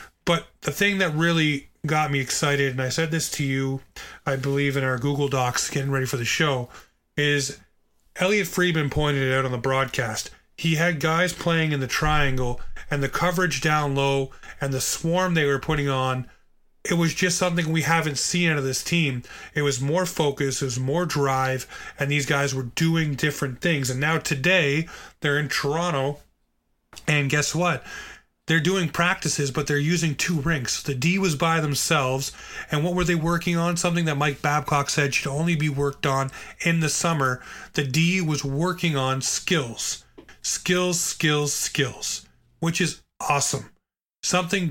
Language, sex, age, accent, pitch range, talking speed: English, male, 30-49, American, 135-165 Hz, 180 wpm